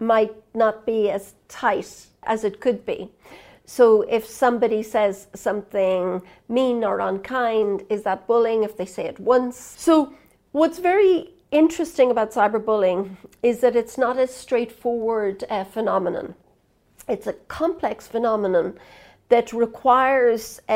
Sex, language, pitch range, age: female, Chinese, 210-255 Hz, 50-69